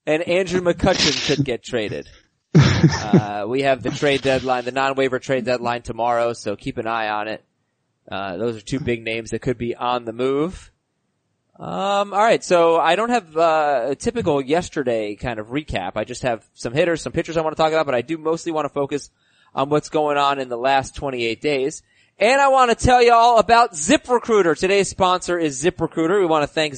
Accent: American